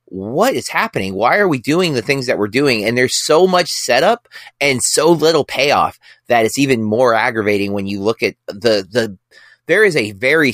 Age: 30-49